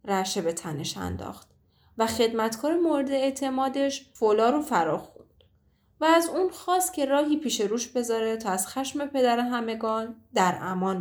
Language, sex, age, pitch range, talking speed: Persian, female, 10-29, 210-270 Hz, 145 wpm